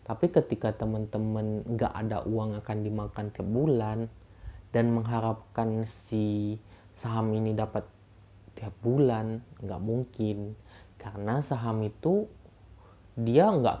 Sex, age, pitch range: male, 20-39, 105-135 Hz